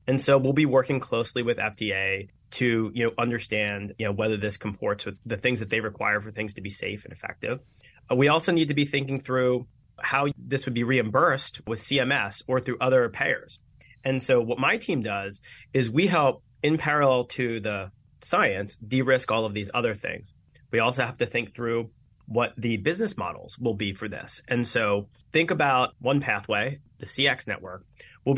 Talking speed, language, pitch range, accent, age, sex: 190 wpm, English, 115-140 Hz, American, 30-49, male